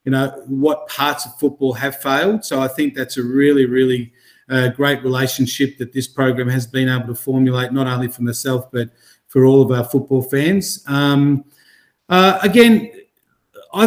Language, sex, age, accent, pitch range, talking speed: English, male, 40-59, Australian, 130-160 Hz, 175 wpm